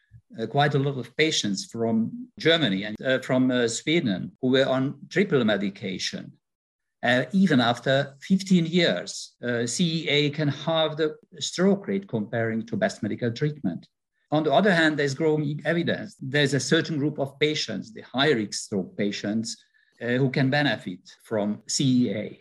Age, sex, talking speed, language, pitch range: 50-69, male, 155 wpm, English, 115-155 Hz